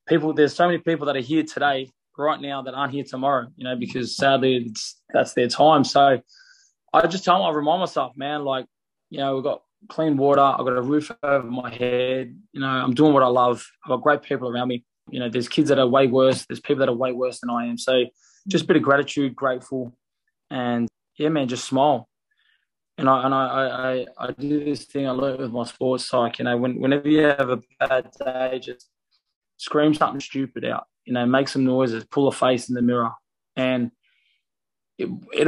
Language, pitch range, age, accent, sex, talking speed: English, 125-145 Hz, 20-39, Australian, male, 220 wpm